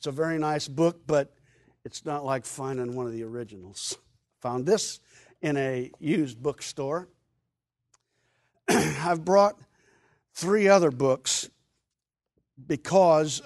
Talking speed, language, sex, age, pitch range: 120 wpm, English, male, 50-69, 135-170 Hz